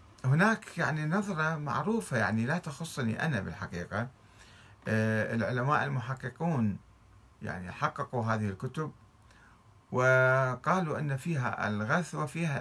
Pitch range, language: 105-140 Hz, Arabic